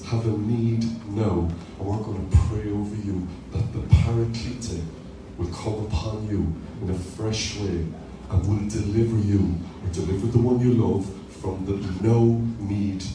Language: English